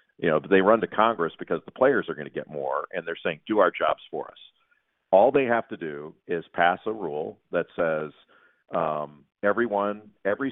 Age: 50-69